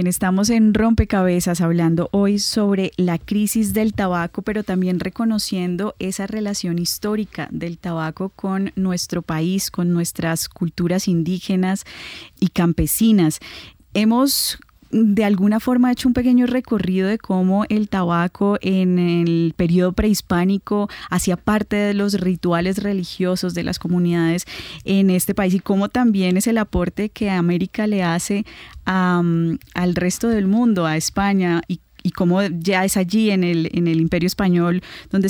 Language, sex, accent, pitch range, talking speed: Spanish, female, Colombian, 175-205 Hz, 145 wpm